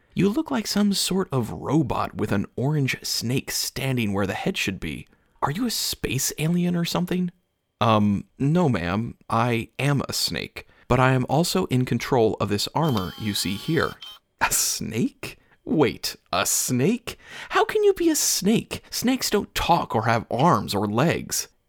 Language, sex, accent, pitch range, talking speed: English, male, American, 105-155 Hz, 170 wpm